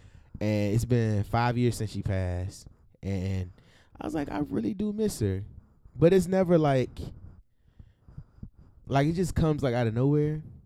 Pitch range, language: 100-145 Hz, English